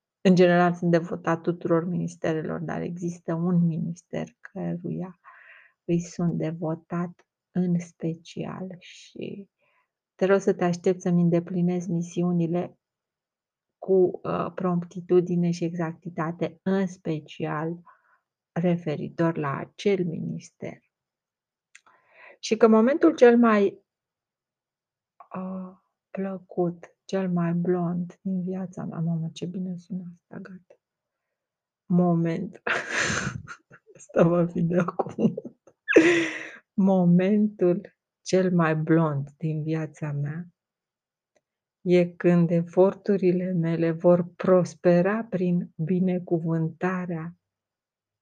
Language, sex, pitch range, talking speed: Romanian, female, 165-185 Hz, 90 wpm